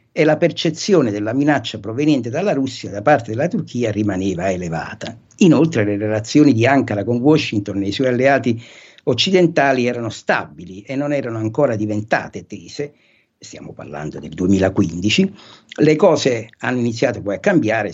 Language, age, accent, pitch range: Italian, 60-79, native, 110-135 Hz